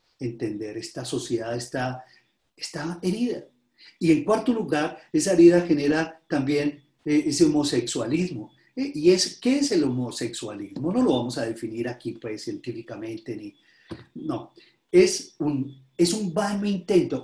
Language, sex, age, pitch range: Spanish, male, 40-59, 135-205 Hz